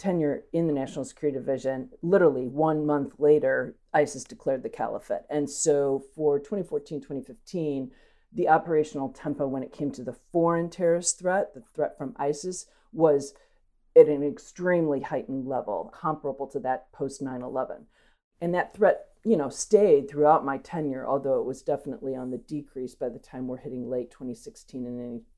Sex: female